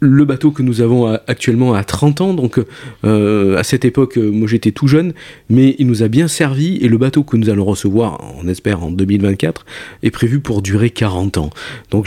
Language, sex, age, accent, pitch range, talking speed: French, male, 40-59, French, 100-130 Hz, 210 wpm